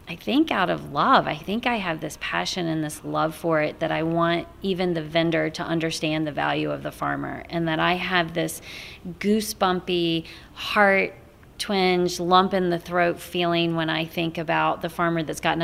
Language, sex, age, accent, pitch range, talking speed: English, female, 30-49, American, 165-200 Hz, 190 wpm